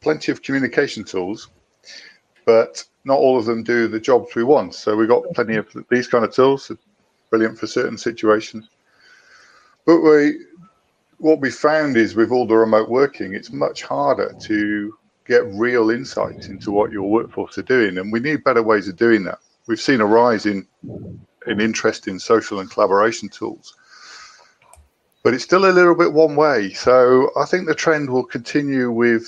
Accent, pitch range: British, 110-130 Hz